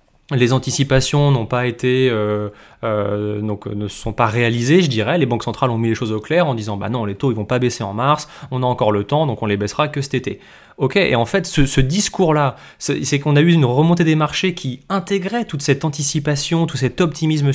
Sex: male